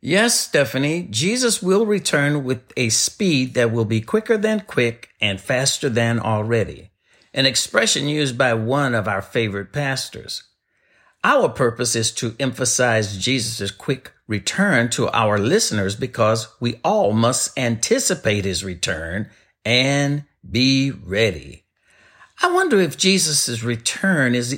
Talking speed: 130 wpm